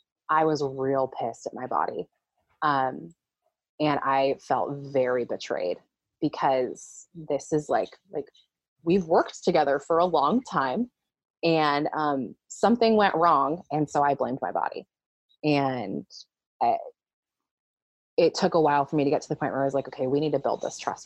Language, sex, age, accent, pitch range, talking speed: English, female, 20-39, American, 145-180 Hz, 170 wpm